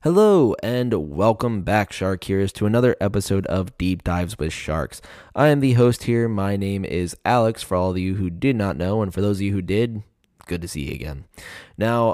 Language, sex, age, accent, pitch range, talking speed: English, male, 20-39, American, 90-105 Hz, 215 wpm